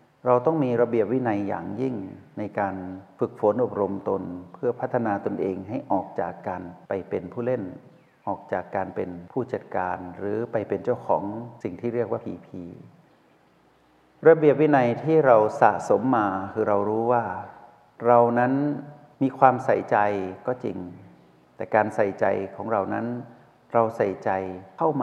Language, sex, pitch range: Thai, male, 100-130 Hz